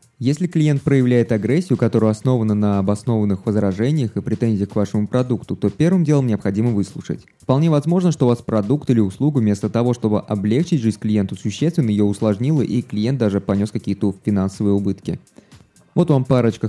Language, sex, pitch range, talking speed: Russian, male, 105-130 Hz, 165 wpm